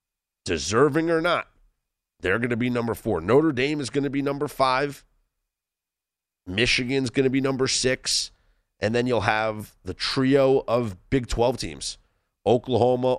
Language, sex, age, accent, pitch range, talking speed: English, male, 30-49, American, 90-135 Hz, 155 wpm